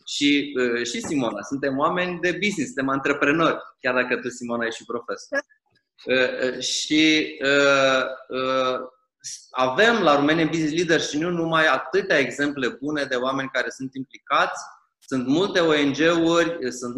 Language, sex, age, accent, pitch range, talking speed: Romanian, male, 20-39, native, 135-170 Hz, 150 wpm